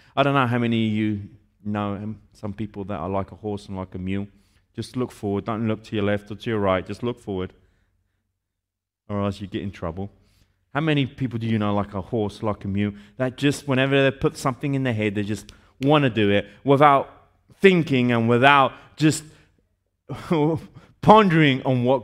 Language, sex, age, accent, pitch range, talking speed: Italian, male, 30-49, British, 100-145 Hz, 205 wpm